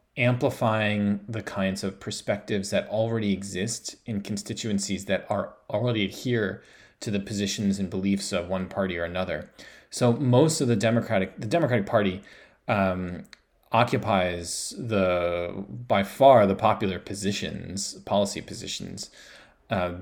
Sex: male